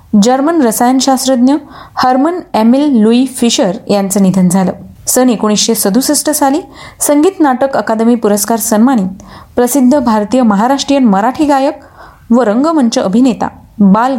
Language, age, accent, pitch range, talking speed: Marathi, 30-49, native, 210-280 Hz, 120 wpm